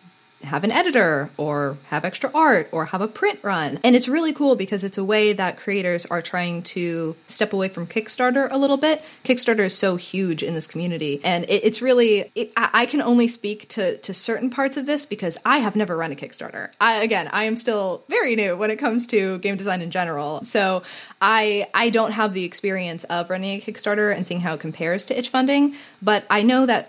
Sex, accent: female, American